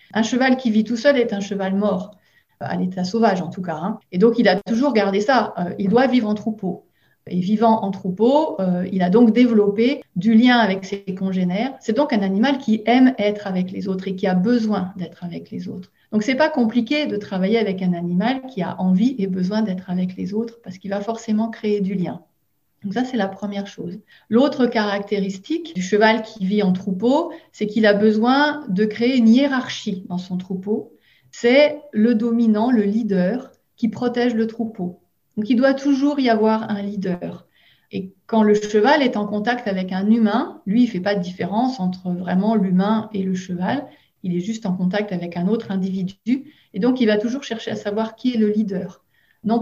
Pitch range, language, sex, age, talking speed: 190-235 Hz, French, female, 40-59, 215 wpm